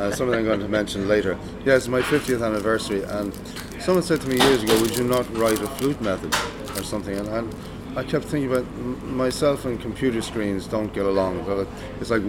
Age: 30-49